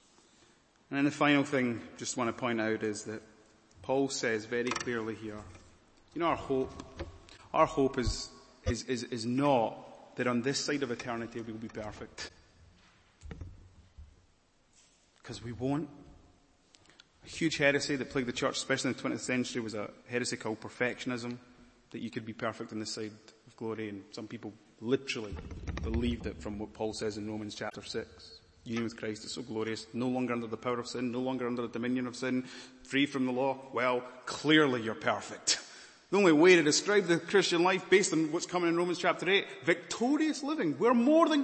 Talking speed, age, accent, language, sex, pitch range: 190 wpm, 30-49, British, English, male, 110-160 Hz